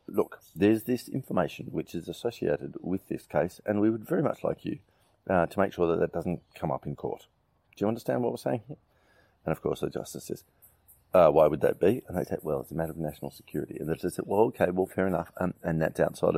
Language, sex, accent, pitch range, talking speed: English, male, Australian, 80-110 Hz, 255 wpm